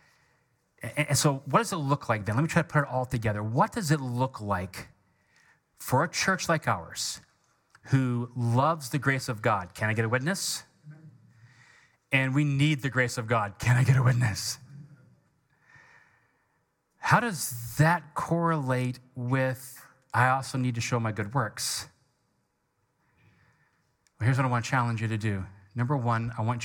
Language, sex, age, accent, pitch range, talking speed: English, male, 30-49, American, 100-130 Hz, 170 wpm